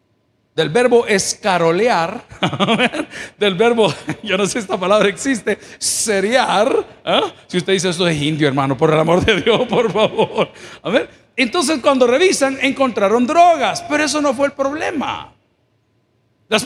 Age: 50-69